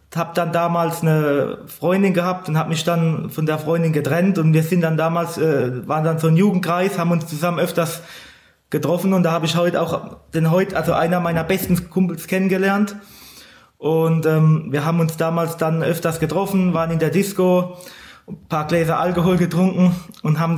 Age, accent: 20-39, German